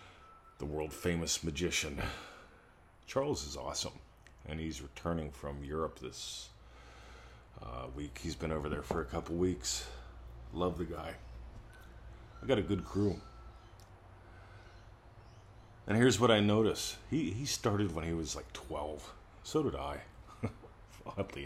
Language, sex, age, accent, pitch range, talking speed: English, male, 40-59, American, 70-95 Hz, 130 wpm